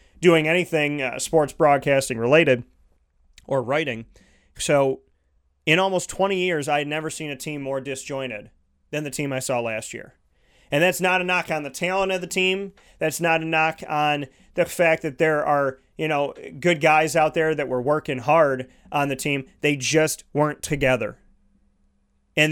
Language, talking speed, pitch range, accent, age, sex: English, 180 wpm, 130-160 Hz, American, 30-49, male